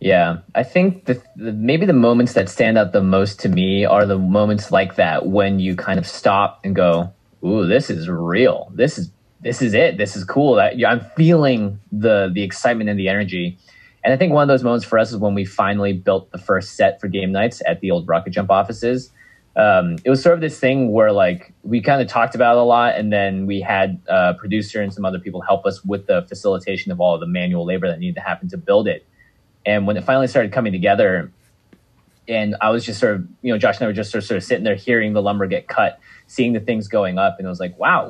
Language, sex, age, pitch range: English, male, 20-39, 100-125 Hz